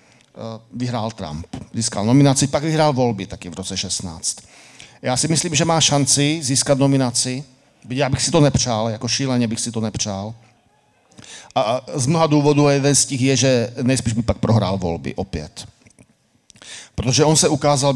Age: 50-69